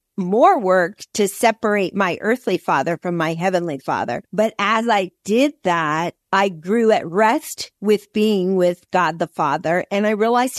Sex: female